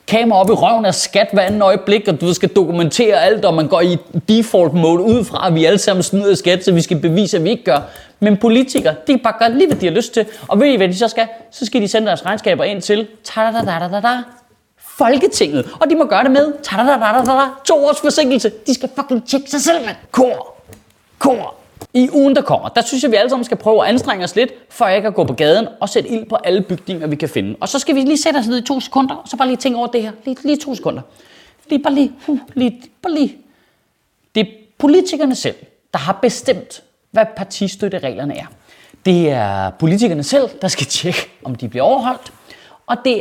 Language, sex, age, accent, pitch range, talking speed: Danish, male, 30-49, native, 185-265 Hz, 220 wpm